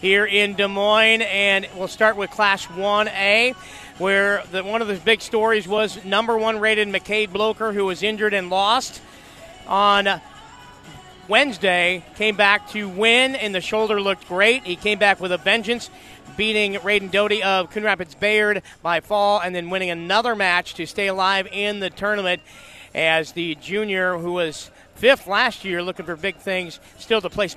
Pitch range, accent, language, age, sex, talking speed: 180-210 Hz, American, English, 40-59, male, 170 wpm